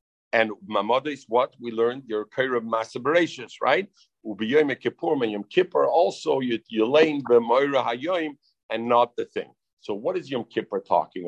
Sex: male